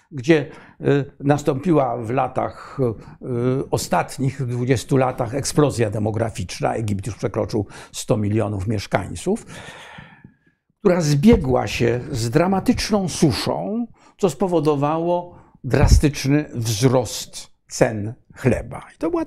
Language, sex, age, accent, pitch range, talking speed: Polish, male, 60-79, native, 125-180 Hz, 95 wpm